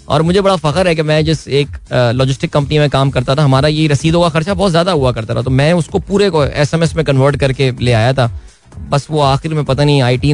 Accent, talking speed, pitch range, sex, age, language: native, 255 wpm, 125-170 Hz, male, 20-39, Hindi